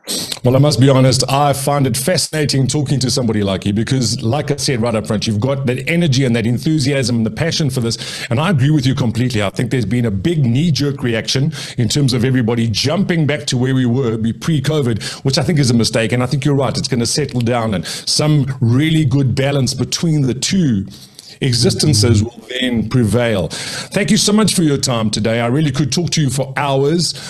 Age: 50-69